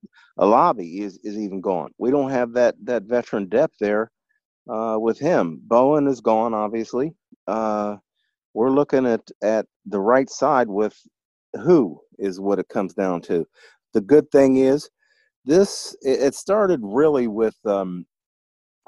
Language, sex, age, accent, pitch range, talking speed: English, male, 50-69, American, 105-135 Hz, 150 wpm